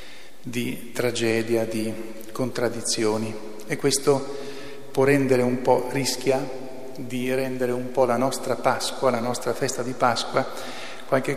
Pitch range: 115-130 Hz